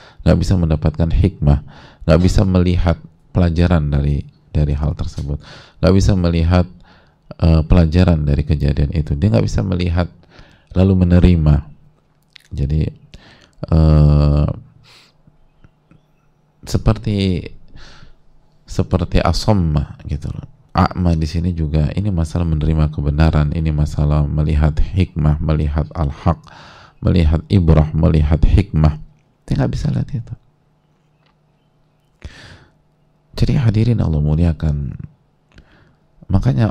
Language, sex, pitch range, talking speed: English, male, 80-115 Hz, 95 wpm